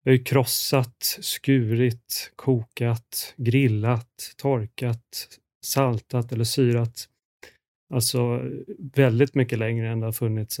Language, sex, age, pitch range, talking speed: Swedish, male, 30-49, 115-135 Hz, 95 wpm